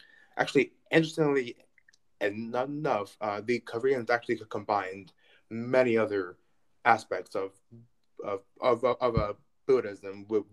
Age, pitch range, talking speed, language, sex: 20-39, 105-130 Hz, 120 wpm, English, male